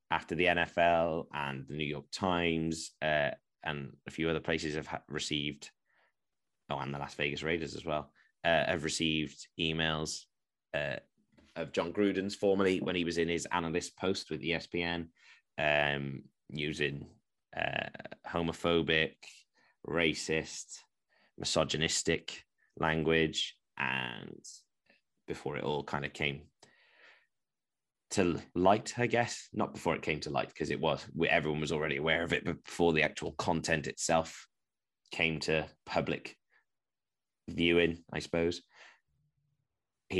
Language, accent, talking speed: English, British, 130 wpm